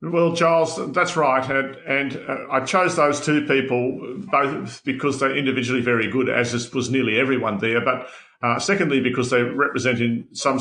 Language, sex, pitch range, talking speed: English, male, 115-130 Hz, 175 wpm